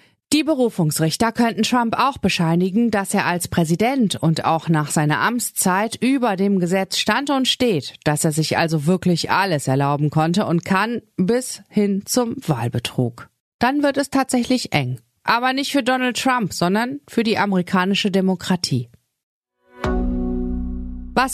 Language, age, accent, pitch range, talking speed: German, 30-49, German, 160-230 Hz, 145 wpm